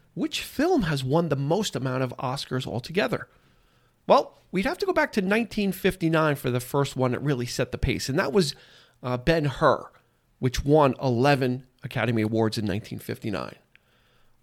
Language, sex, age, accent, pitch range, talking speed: English, male, 40-59, American, 125-180 Hz, 160 wpm